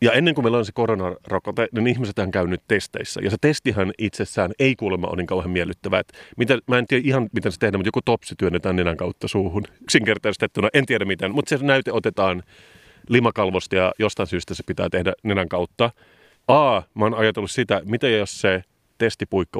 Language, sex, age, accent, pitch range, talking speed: Finnish, male, 30-49, native, 95-115 Hz, 190 wpm